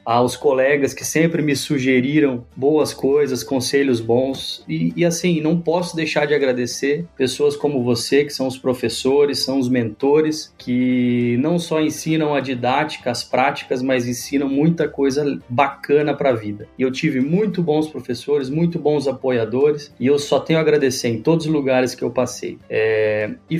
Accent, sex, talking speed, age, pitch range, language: Brazilian, male, 175 wpm, 20-39, 125-150 Hz, Portuguese